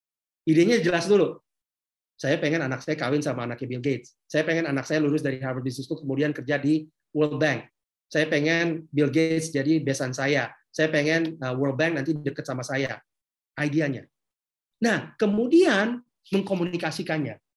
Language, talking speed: Indonesian, 155 wpm